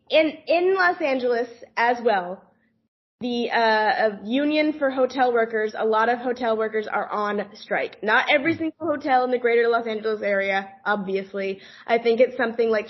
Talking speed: 170 wpm